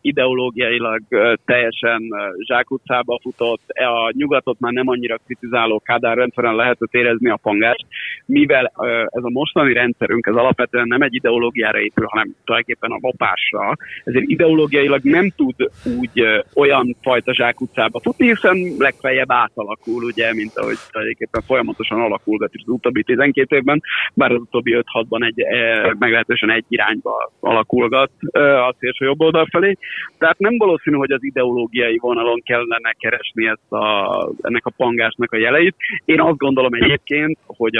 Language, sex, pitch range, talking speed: Hungarian, male, 115-145 Hz, 140 wpm